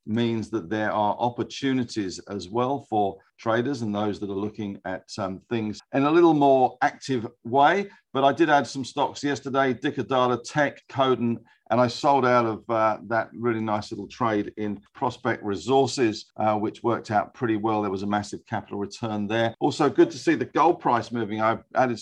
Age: 50-69